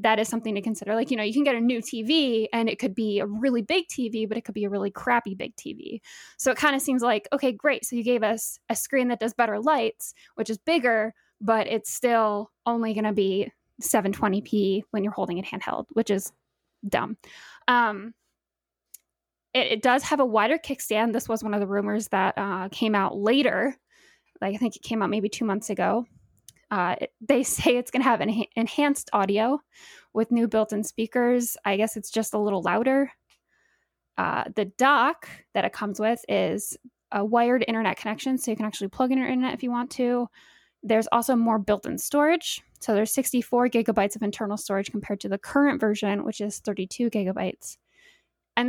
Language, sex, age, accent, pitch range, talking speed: English, female, 10-29, American, 210-255 Hz, 200 wpm